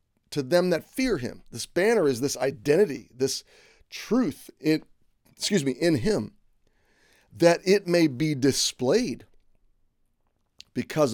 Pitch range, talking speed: 115-165 Hz, 125 wpm